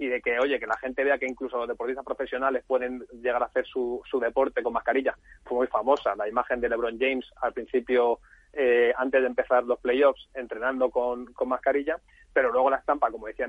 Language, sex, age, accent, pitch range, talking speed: Spanish, male, 30-49, Spanish, 125-150 Hz, 215 wpm